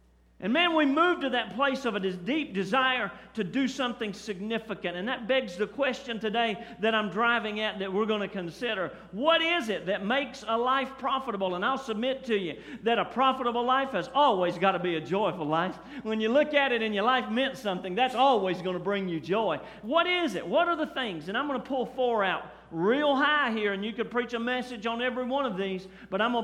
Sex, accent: male, American